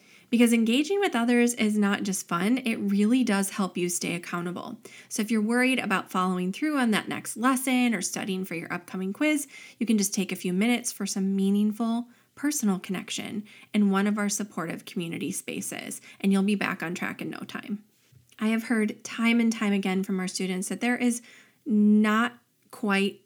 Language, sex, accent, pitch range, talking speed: English, female, American, 195-240 Hz, 195 wpm